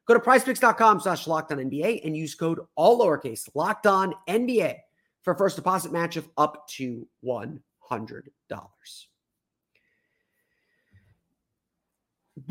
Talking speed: 90 wpm